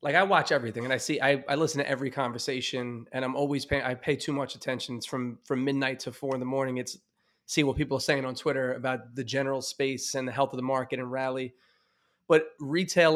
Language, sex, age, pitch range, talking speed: English, male, 20-39, 130-145 Hz, 235 wpm